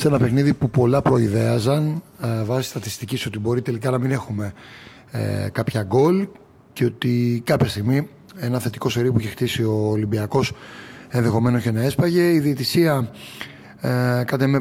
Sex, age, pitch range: male, 30-49, 120-145 Hz